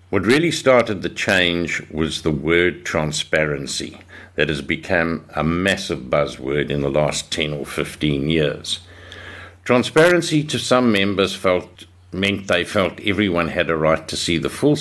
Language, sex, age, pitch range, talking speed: English, male, 60-79, 75-95 Hz, 155 wpm